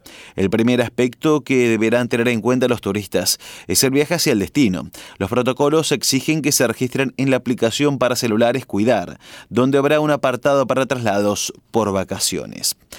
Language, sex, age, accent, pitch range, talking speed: Spanish, male, 30-49, Argentinian, 115-140 Hz, 165 wpm